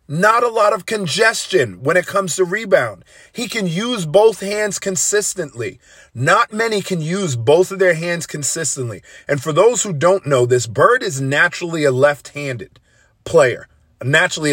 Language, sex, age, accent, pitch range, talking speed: English, male, 40-59, American, 140-205 Hz, 160 wpm